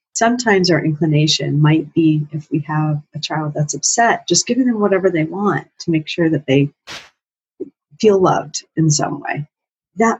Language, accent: English, American